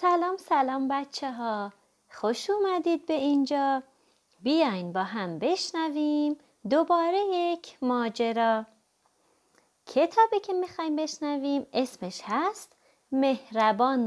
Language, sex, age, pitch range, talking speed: Persian, female, 30-49, 210-310 Hz, 90 wpm